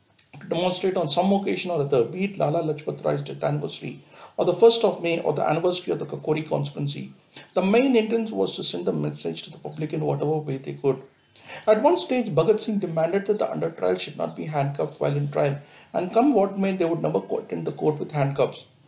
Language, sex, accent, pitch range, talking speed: English, male, Indian, 145-195 Hz, 220 wpm